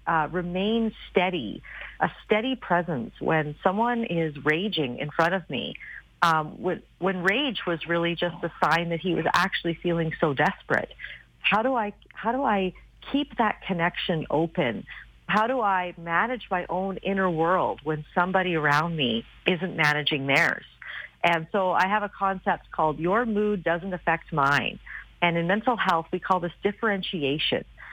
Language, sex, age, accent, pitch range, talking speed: English, female, 40-59, American, 165-200 Hz, 160 wpm